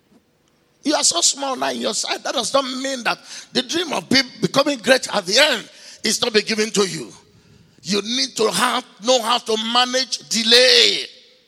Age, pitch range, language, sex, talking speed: 50-69, 210-270 Hz, English, male, 195 wpm